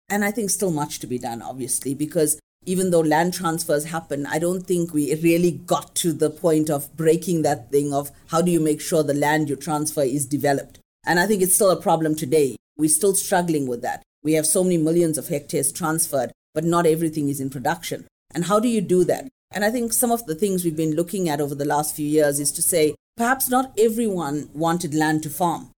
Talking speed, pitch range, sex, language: 230 wpm, 150-185 Hz, female, English